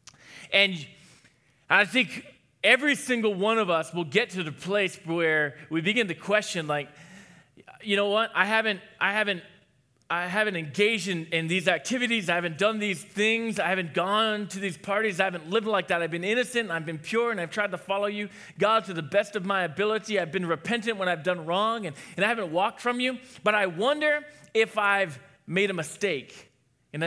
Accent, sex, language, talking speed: American, male, English, 205 wpm